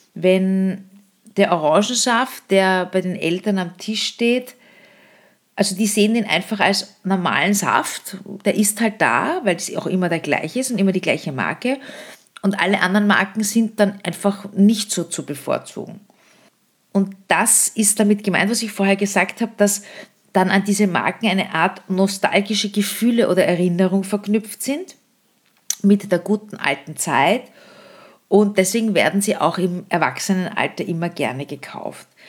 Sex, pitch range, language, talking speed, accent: female, 180-210 Hz, German, 155 wpm, Austrian